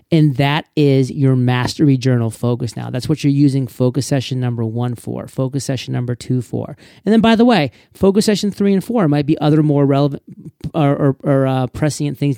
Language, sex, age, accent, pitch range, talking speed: English, male, 30-49, American, 130-165 Hz, 210 wpm